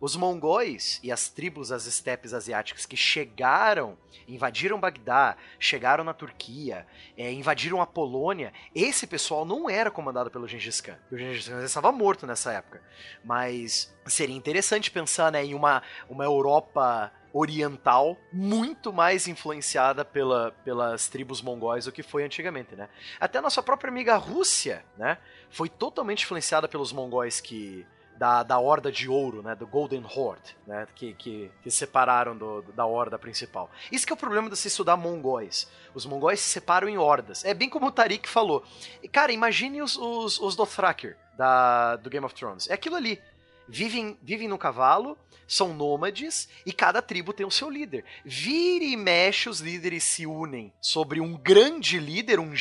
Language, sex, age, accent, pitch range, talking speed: Portuguese, male, 30-49, Brazilian, 125-205 Hz, 165 wpm